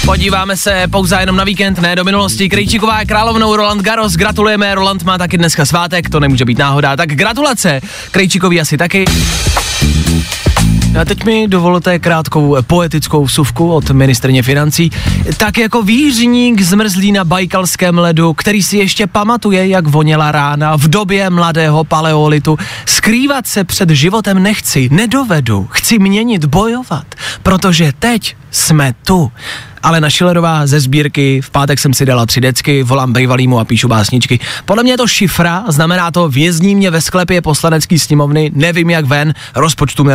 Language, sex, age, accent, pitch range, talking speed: Czech, male, 20-39, native, 130-190 Hz, 155 wpm